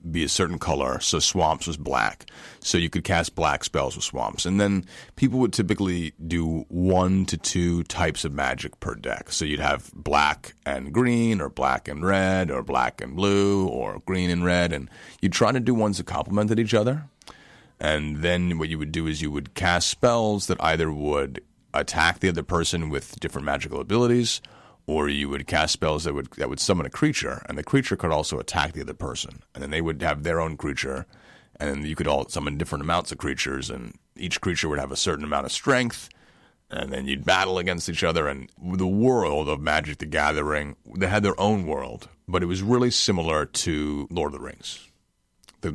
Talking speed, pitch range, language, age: 205 wpm, 75-95 Hz, English, 30-49